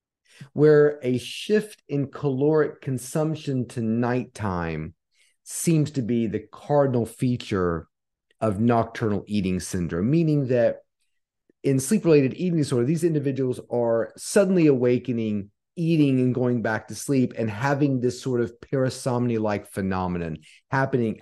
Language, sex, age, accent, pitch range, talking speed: English, male, 30-49, American, 100-140 Hz, 125 wpm